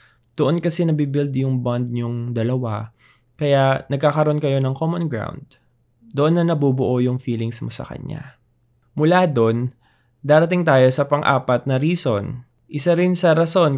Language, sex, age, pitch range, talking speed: Filipino, male, 20-39, 120-140 Hz, 145 wpm